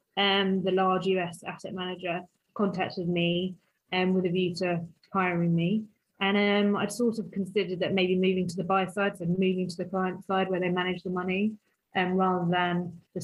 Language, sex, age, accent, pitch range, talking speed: English, female, 20-39, British, 185-210 Hz, 200 wpm